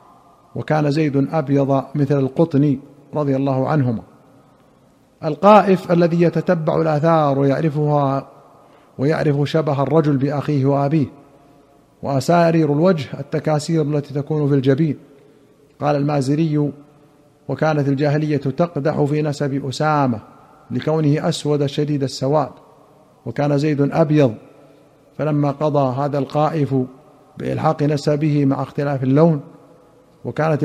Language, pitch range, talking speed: Arabic, 140-155 Hz, 100 wpm